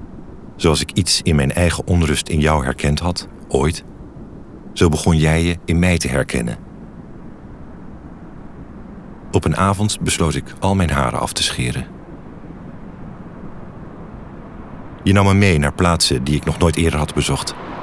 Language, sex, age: Dutch, male, 50-69